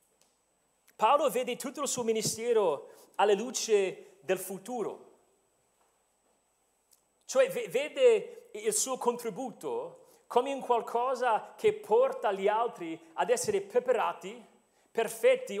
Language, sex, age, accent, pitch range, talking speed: Italian, male, 40-59, native, 175-270 Hz, 100 wpm